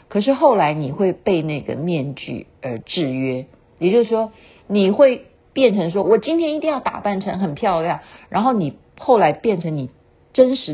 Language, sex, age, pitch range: Chinese, female, 50-69, 150-215 Hz